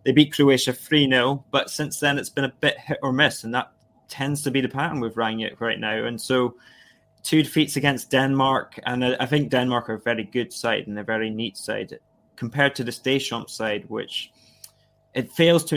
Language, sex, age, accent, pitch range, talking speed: English, male, 20-39, British, 115-135 Hz, 205 wpm